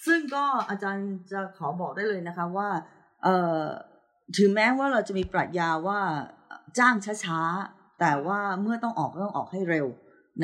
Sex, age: female, 30-49